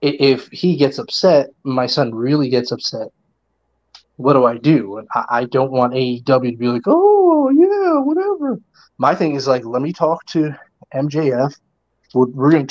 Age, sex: 30-49, male